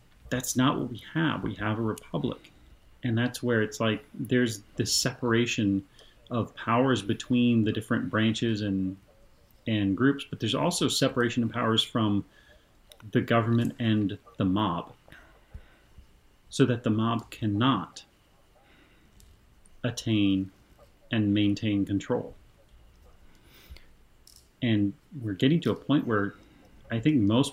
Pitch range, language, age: 105-125 Hz, English, 30-49